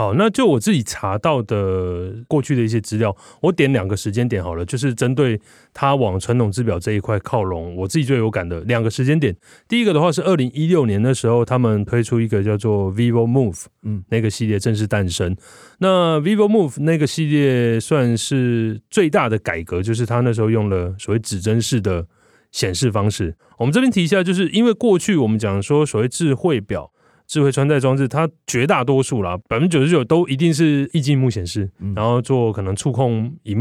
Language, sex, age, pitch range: Chinese, male, 30-49, 105-150 Hz